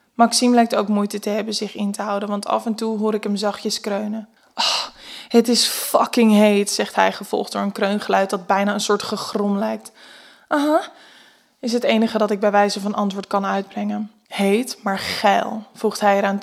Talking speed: 200 wpm